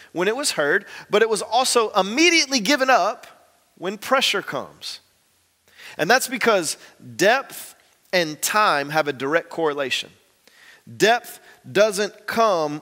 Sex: male